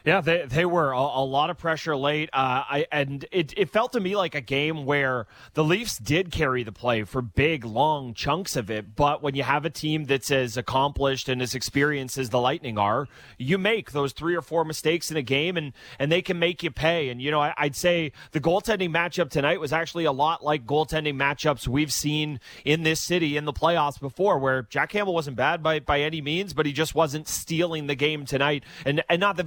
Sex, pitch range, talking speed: male, 135-165 Hz, 225 wpm